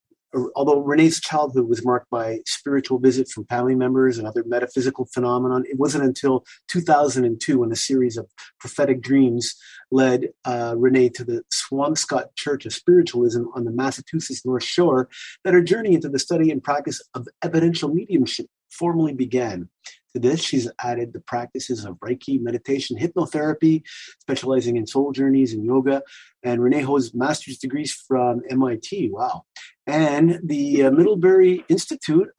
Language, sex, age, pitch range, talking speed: English, male, 30-49, 125-185 Hz, 150 wpm